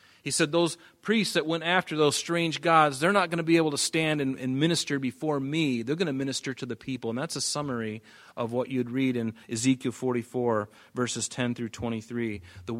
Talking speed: 210 wpm